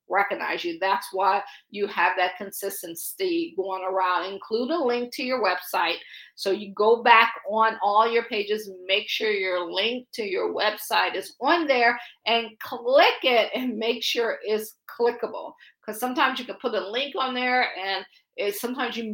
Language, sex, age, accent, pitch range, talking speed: English, female, 50-69, American, 200-250 Hz, 170 wpm